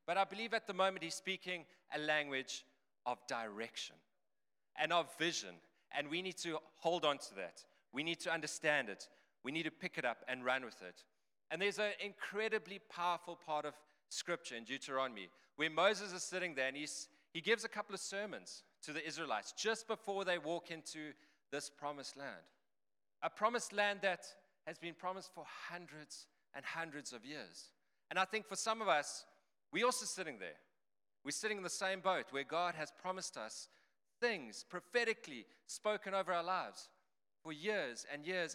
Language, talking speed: English, 180 wpm